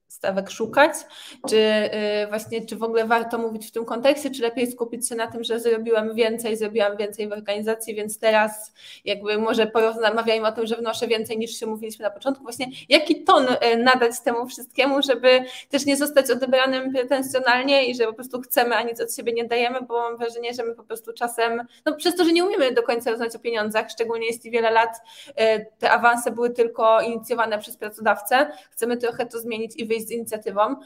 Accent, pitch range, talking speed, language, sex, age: native, 215-255 Hz, 195 wpm, Polish, female, 20-39